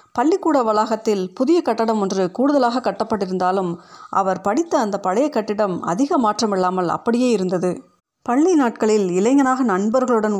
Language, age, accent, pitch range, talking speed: Tamil, 30-49, native, 190-245 Hz, 115 wpm